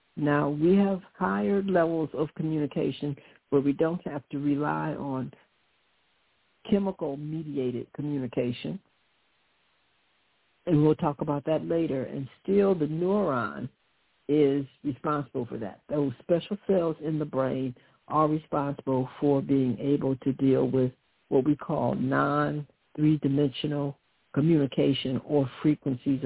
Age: 60-79